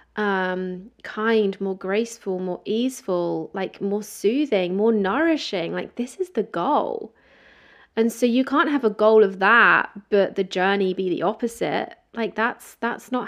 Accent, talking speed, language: British, 160 wpm, English